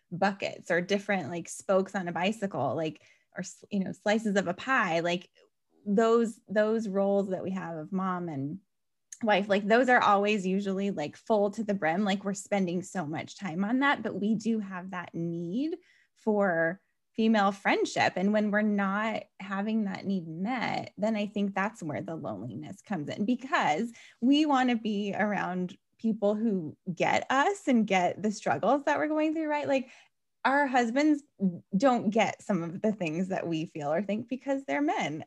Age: 20-39